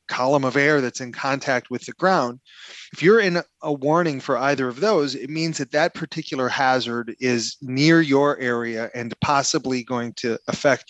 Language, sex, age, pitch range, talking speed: English, male, 30-49, 120-140 Hz, 180 wpm